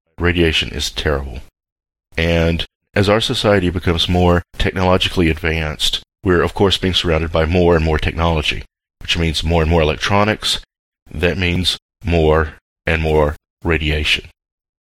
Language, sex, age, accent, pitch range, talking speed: English, male, 40-59, American, 75-95 Hz, 135 wpm